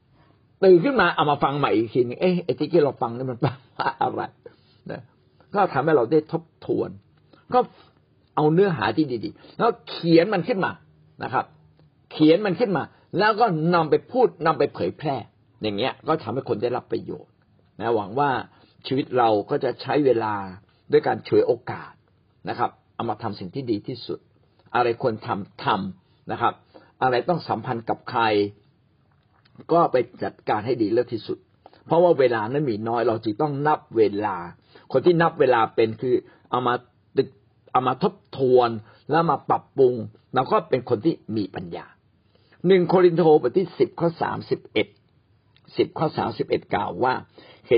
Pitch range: 110-165 Hz